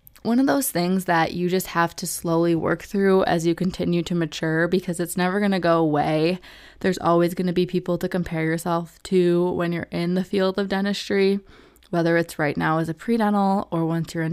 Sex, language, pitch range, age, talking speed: female, English, 165-190 Hz, 20-39, 220 wpm